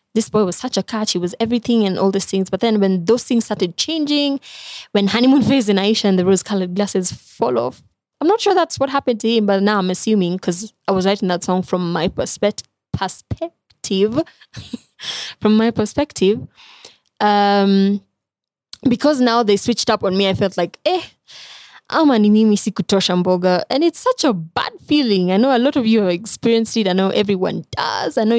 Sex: female